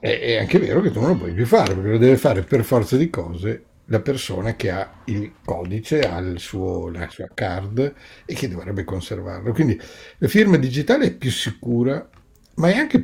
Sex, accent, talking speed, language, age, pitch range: male, native, 205 wpm, Italian, 60-79, 95-130 Hz